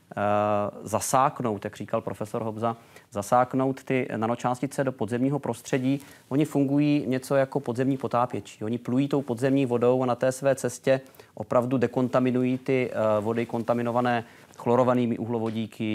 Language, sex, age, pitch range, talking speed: Czech, male, 30-49, 110-125 Hz, 130 wpm